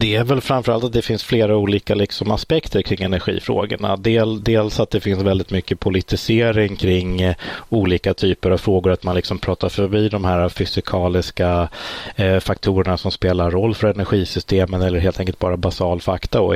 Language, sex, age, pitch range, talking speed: Swedish, male, 30-49, 90-105 Hz, 175 wpm